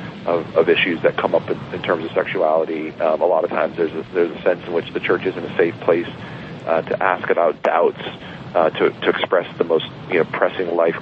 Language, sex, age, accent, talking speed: English, male, 40-59, American, 245 wpm